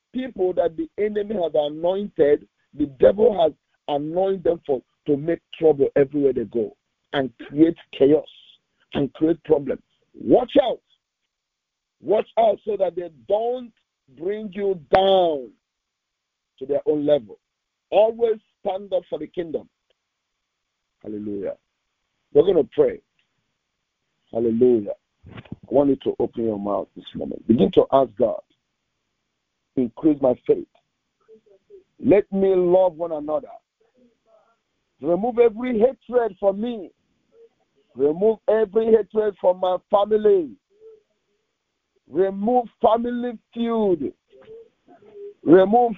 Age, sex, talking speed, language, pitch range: 50-69, male, 115 wpm, English, 165-255 Hz